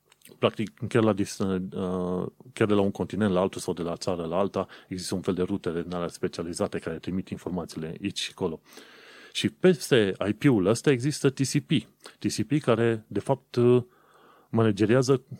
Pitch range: 100-125 Hz